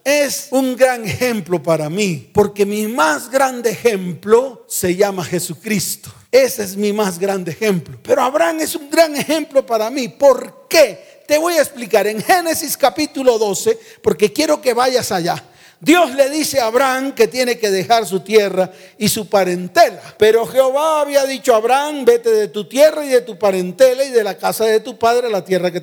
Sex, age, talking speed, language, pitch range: male, 40-59, 190 wpm, Spanish, 190-280 Hz